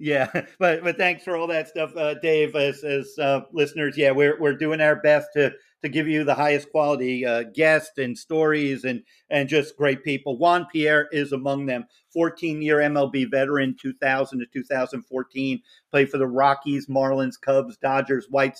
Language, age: English, 50-69